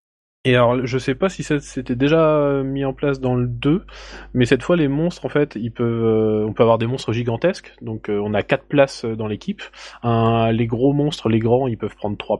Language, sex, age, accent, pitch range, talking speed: French, male, 20-39, French, 110-135 Hz, 235 wpm